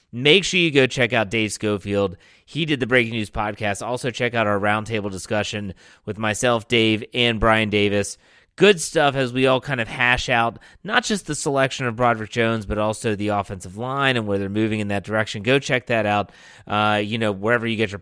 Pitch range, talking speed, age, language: 105-135 Hz, 215 wpm, 30-49, English